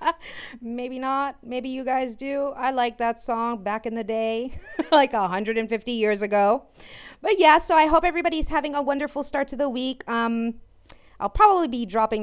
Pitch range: 205-270 Hz